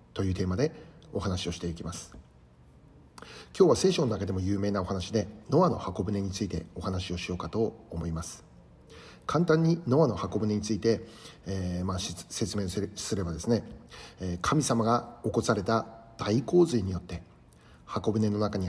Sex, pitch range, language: male, 90-115 Hz, Japanese